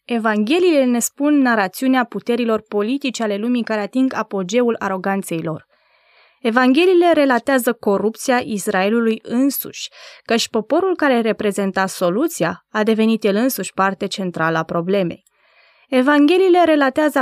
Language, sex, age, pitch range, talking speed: Romanian, female, 20-39, 200-260 Hz, 115 wpm